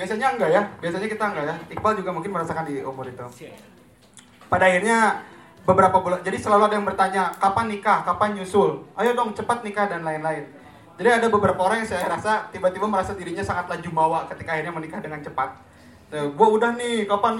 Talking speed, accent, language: 190 wpm, native, Indonesian